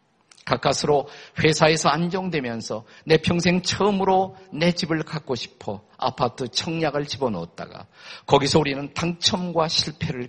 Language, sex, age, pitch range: Korean, male, 50-69, 130-170 Hz